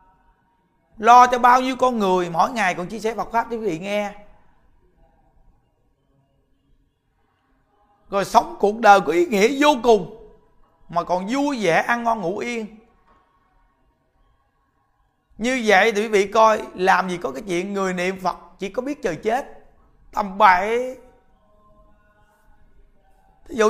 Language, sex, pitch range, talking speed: Vietnamese, male, 170-230 Hz, 140 wpm